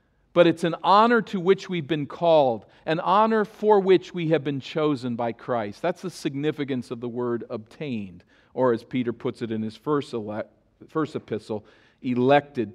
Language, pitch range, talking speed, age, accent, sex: English, 120-170 Hz, 175 wpm, 50-69, American, male